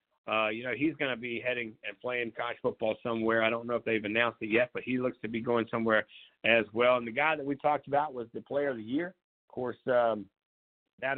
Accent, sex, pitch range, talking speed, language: American, male, 115-140 Hz, 250 wpm, English